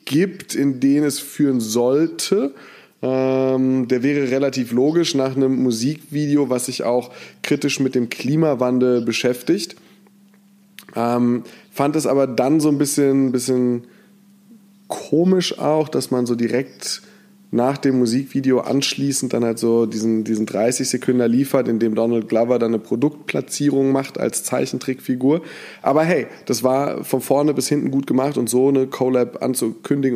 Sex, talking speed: male, 145 wpm